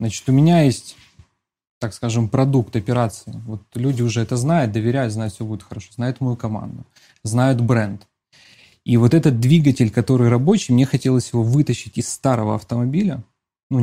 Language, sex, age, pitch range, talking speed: Russian, male, 20-39, 115-135 Hz, 160 wpm